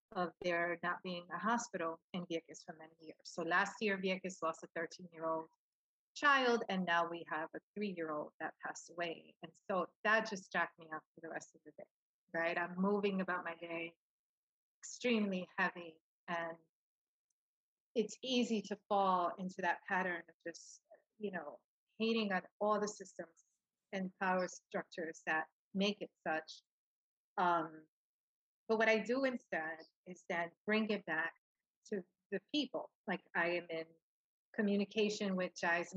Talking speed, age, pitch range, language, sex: 165 wpm, 30-49, 170-200 Hz, English, female